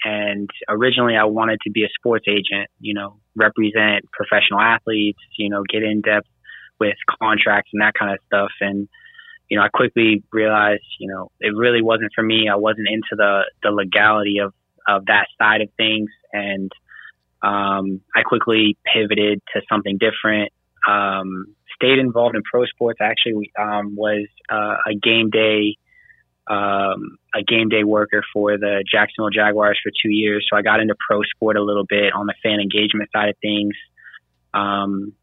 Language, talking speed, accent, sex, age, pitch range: English, 170 wpm, American, male, 20-39, 100-110 Hz